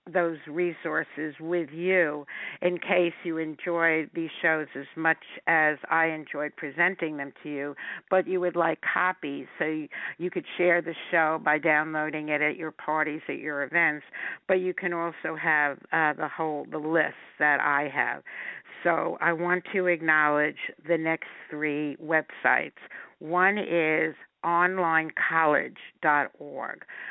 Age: 60-79